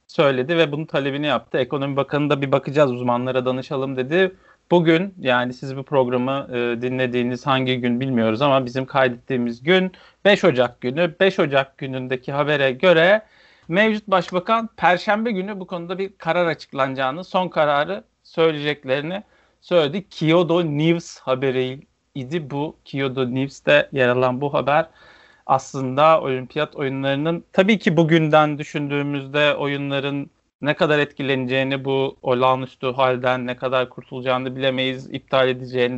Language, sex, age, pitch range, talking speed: Turkish, male, 40-59, 130-175 Hz, 130 wpm